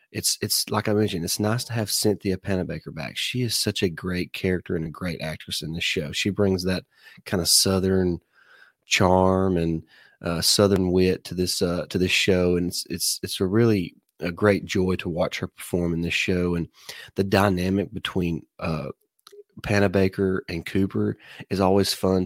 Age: 30-49